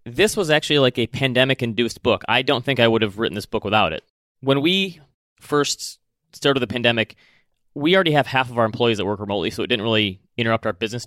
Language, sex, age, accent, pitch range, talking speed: English, male, 30-49, American, 105-120 Hz, 220 wpm